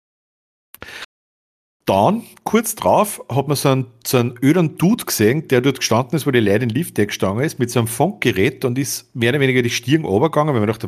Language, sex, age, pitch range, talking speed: German, male, 50-69, 105-140 Hz, 205 wpm